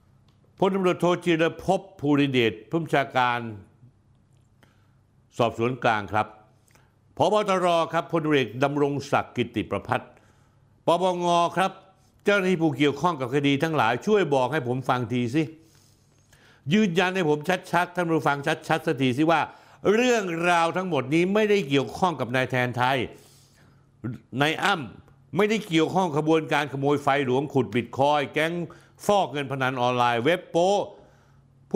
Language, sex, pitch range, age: Thai, male, 125-170 Hz, 60-79